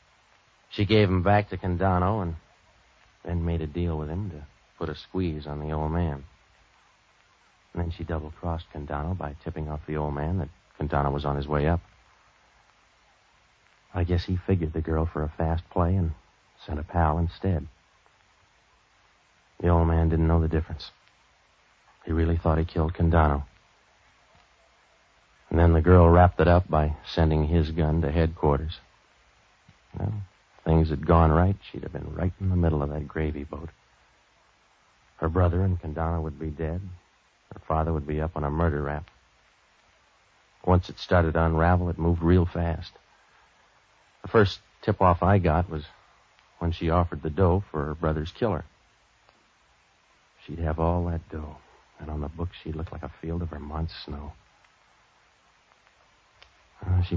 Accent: American